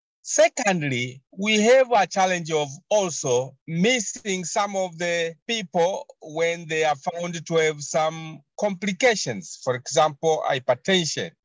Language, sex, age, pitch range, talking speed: English, male, 50-69, 150-190 Hz, 120 wpm